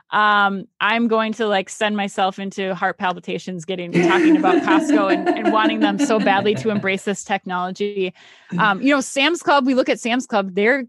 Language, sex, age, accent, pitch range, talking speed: English, female, 20-39, American, 180-225 Hz, 195 wpm